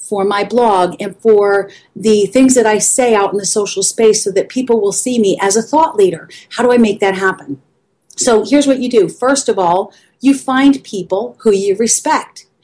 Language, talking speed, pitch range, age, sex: English, 215 wpm, 210-260 Hz, 40-59, female